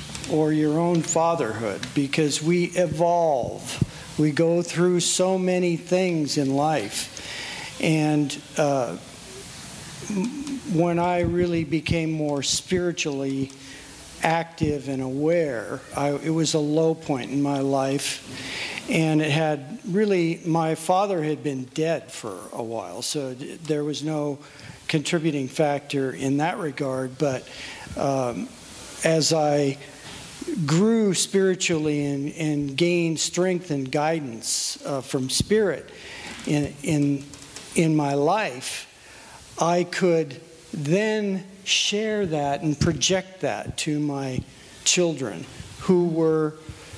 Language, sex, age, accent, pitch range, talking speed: English, male, 50-69, American, 145-175 Hz, 110 wpm